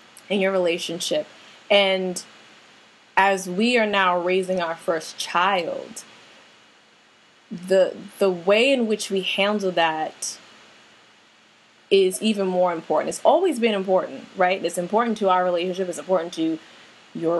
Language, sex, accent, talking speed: English, female, American, 130 wpm